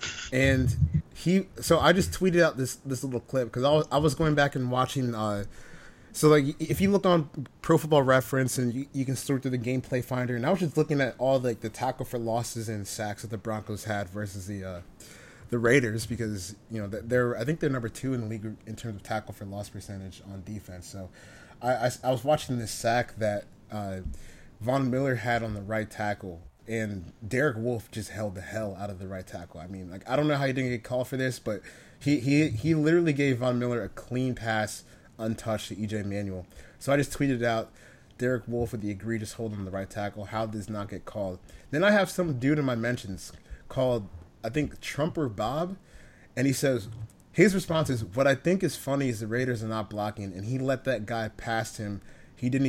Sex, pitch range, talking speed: male, 105-135 Hz, 230 wpm